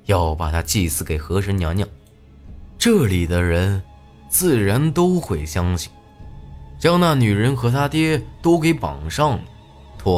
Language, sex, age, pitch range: Chinese, male, 20-39, 80-125 Hz